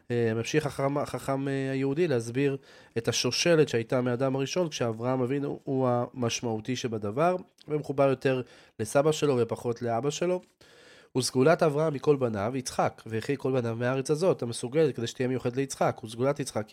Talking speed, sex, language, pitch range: 135 wpm, male, Hebrew, 120-145 Hz